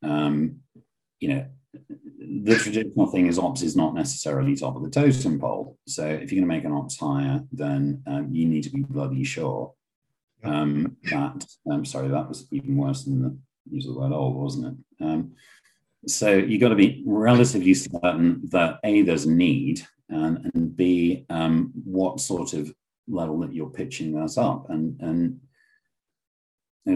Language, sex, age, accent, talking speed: English, male, 40-59, British, 175 wpm